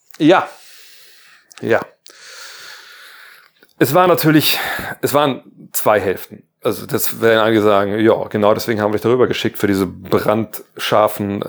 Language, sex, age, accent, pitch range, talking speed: German, male, 30-49, German, 105-135 Hz, 130 wpm